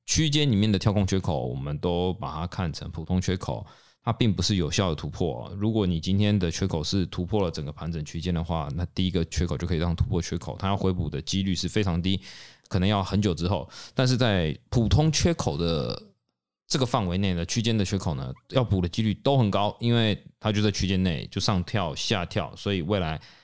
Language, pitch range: Chinese, 85-105 Hz